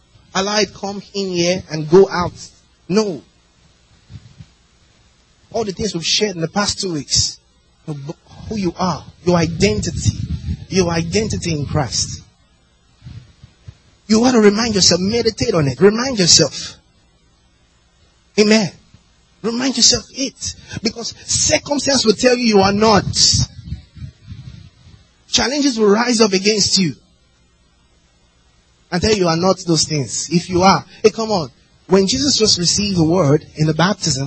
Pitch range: 145-205 Hz